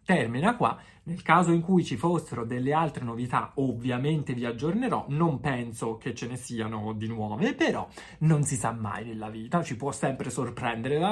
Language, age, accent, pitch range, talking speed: Italian, 30-49, native, 120-180 Hz, 180 wpm